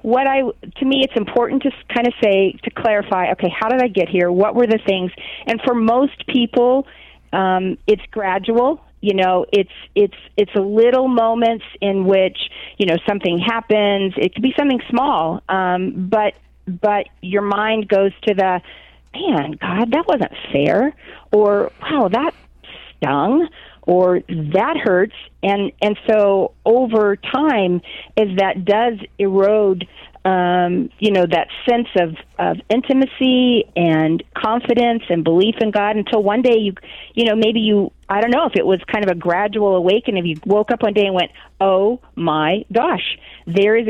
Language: English